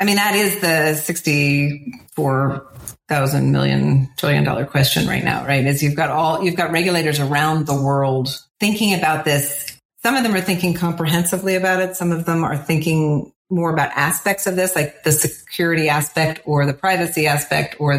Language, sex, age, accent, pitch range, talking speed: English, female, 40-59, American, 140-165 Hz, 175 wpm